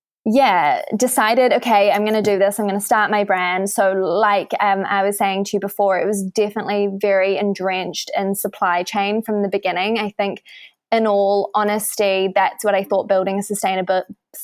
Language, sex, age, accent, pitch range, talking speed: English, female, 20-39, Australian, 195-215 Hz, 190 wpm